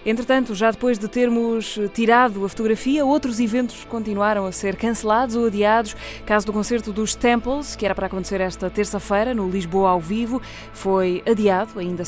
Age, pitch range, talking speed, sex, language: 20-39, 195-240 Hz, 175 wpm, female, Portuguese